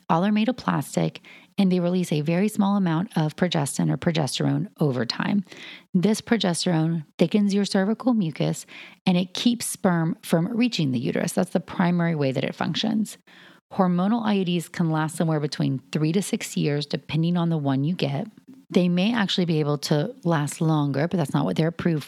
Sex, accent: female, American